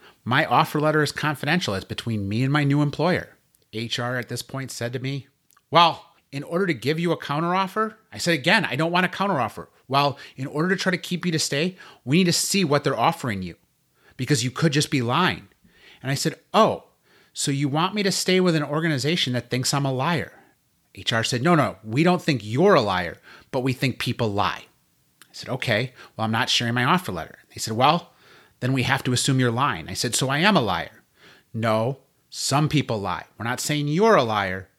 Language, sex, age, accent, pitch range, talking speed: English, male, 30-49, American, 125-170 Hz, 225 wpm